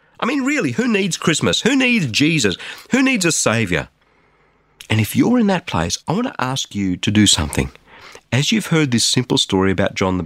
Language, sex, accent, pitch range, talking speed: English, male, Australian, 100-150 Hz, 210 wpm